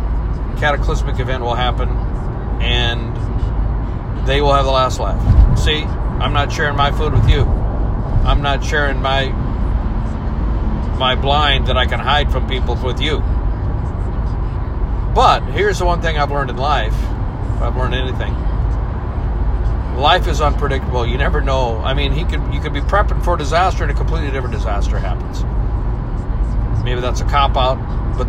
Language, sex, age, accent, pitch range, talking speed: English, male, 50-69, American, 105-120 Hz, 155 wpm